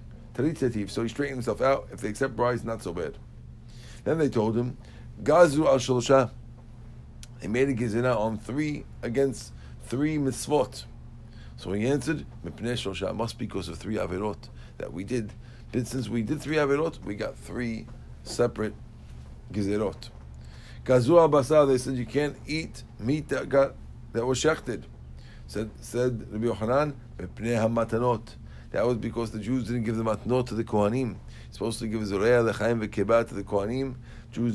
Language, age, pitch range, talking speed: English, 50-69, 105-130 Hz, 155 wpm